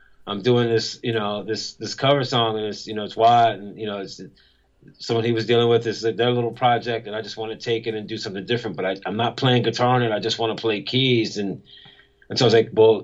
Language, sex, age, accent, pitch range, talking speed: English, male, 30-49, American, 105-120 Hz, 285 wpm